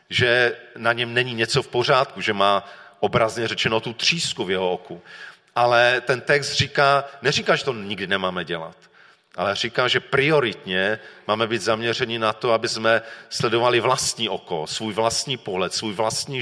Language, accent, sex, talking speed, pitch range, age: Czech, native, male, 165 wpm, 110-145 Hz, 40-59